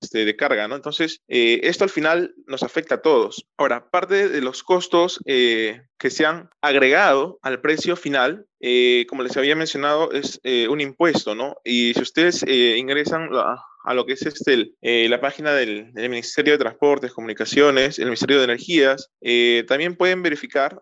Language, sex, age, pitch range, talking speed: Spanish, male, 20-39, 125-160 Hz, 180 wpm